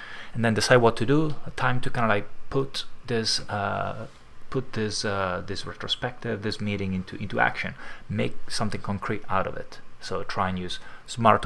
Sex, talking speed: male, 190 wpm